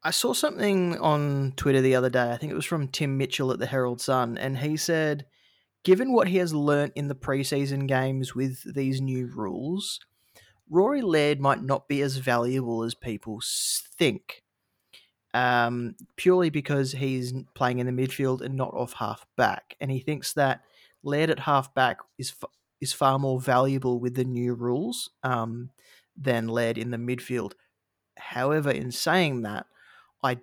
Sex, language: male, English